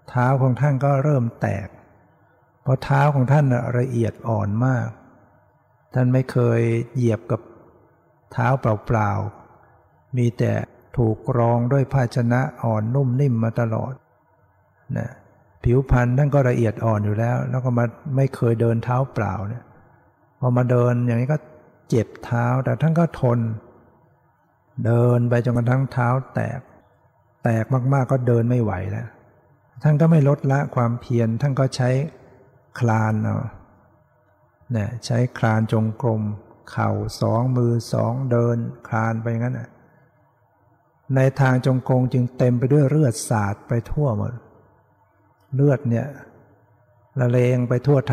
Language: Thai